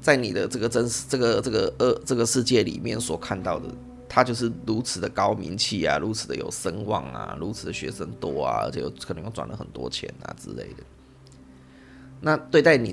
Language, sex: Chinese, male